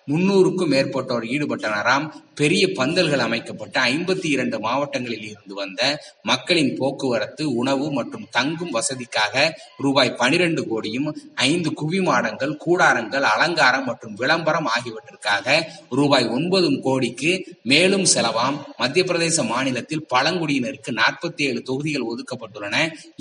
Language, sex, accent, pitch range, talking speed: Tamil, male, native, 130-170 Hz, 100 wpm